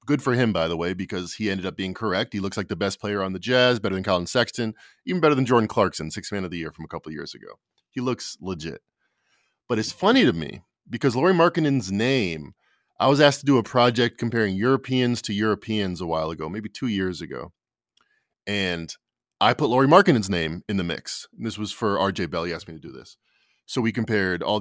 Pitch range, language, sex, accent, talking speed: 95-135 Hz, English, male, American, 235 wpm